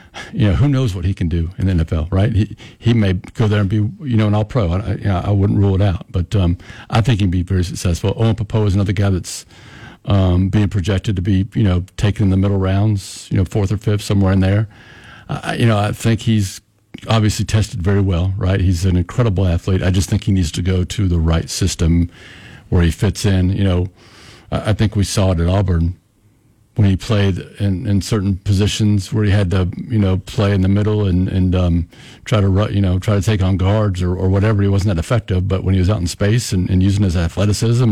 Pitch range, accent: 95-110 Hz, American